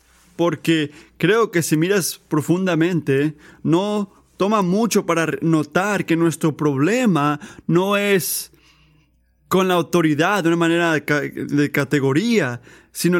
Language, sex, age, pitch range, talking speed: Spanish, male, 30-49, 145-195 Hz, 115 wpm